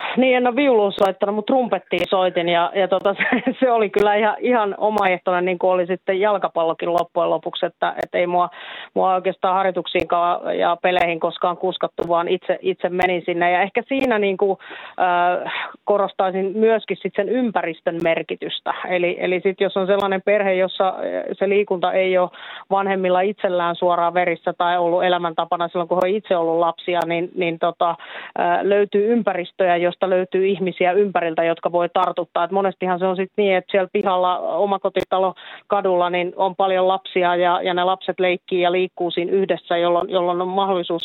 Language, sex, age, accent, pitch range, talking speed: Finnish, female, 30-49, native, 175-195 Hz, 175 wpm